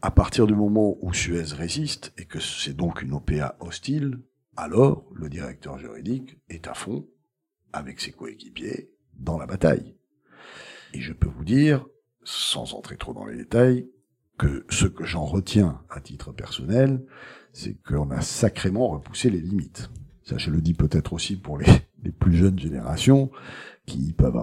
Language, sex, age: French, male, 50-69